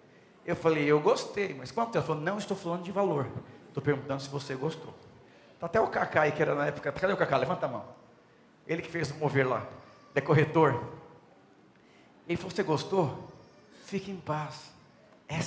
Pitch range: 135-185 Hz